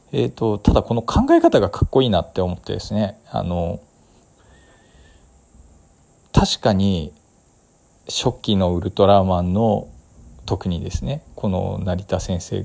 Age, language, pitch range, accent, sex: 40-59, Japanese, 85-110 Hz, native, male